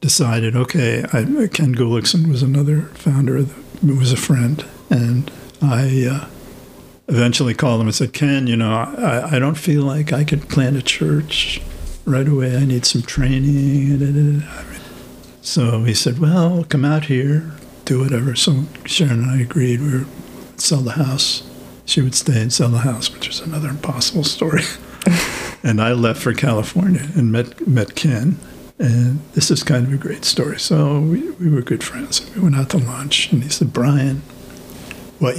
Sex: male